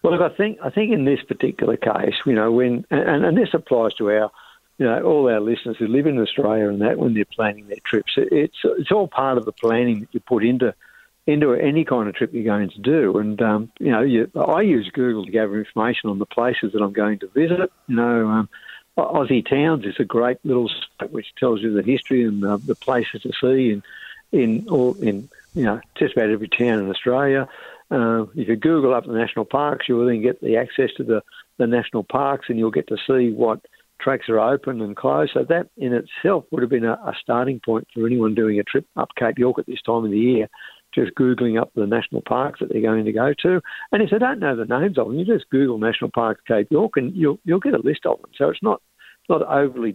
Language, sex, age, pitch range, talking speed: English, male, 60-79, 110-135 Hz, 245 wpm